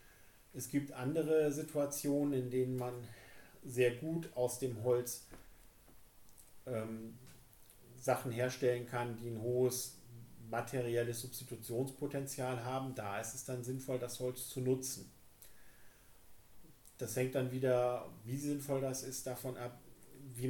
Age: 40-59